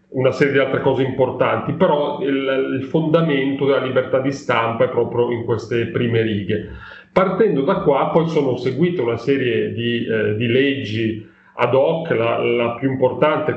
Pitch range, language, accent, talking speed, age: 115-140 Hz, Italian, native, 170 wpm, 30-49